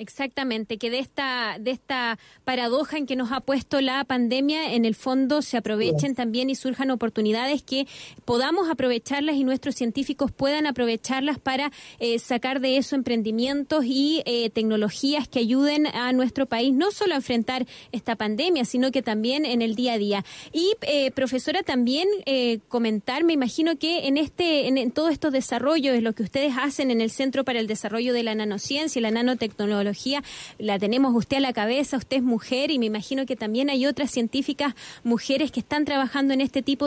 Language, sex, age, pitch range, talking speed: Spanish, female, 20-39, 240-285 Hz, 190 wpm